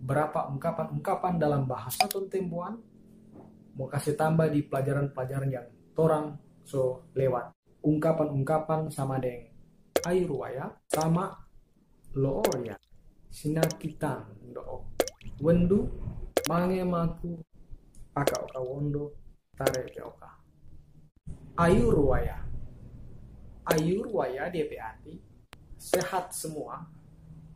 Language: Indonesian